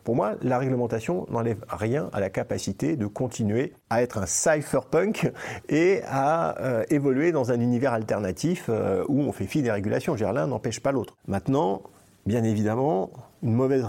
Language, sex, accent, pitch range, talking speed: French, male, French, 105-135 Hz, 170 wpm